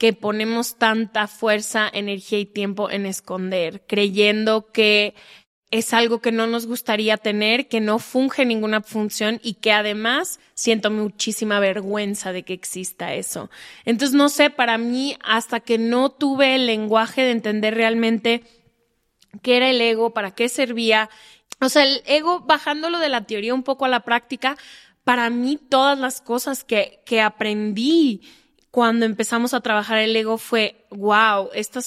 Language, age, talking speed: Spanish, 20-39, 160 wpm